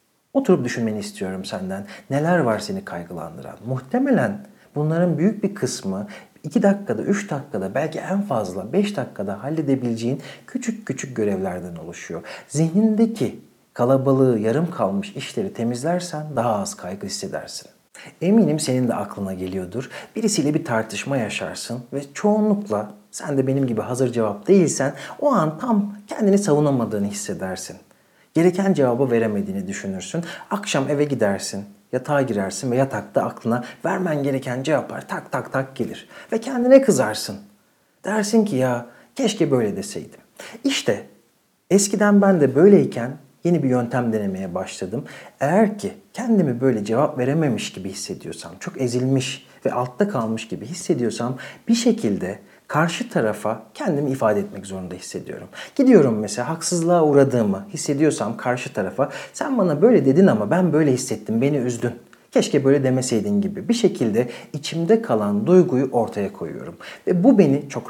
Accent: native